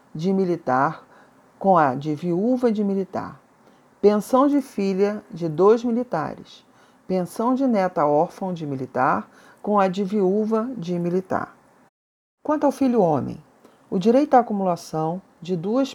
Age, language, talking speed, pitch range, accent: 40-59, Portuguese, 135 wpm, 160-225 Hz, Brazilian